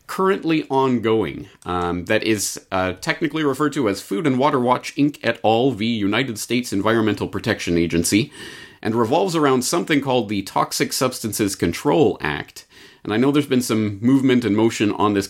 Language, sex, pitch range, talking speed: English, male, 90-125 Hz, 175 wpm